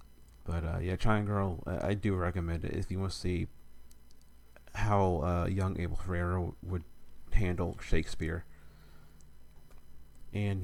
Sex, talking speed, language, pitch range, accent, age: male, 130 wpm, English, 75-95 Hz, American, 30-49